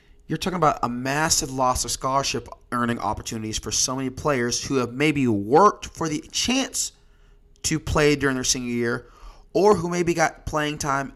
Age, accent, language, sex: 30-49, American, English, male